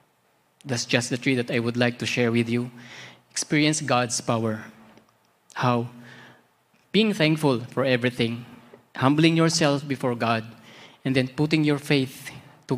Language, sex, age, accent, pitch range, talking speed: Filipino, male, 20-39, native, 120-150 Hz, 140 wpm